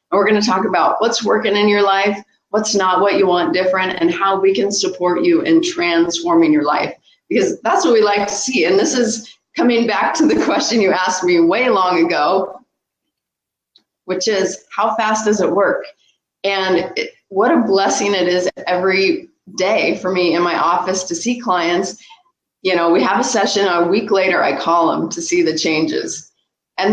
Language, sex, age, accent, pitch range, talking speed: English, female, 30-49, American, 185-255 Hz, 200 wpm